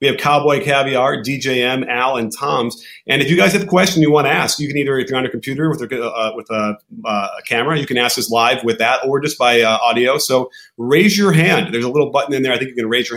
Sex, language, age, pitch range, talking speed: male, English, 30-49, 120-155 Hz, 285 wpm